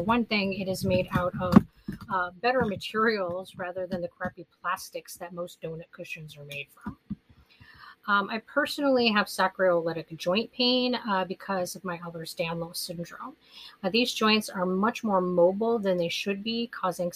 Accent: American